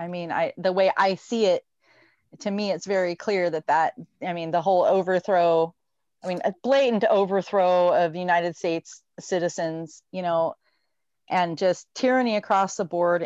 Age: 30-49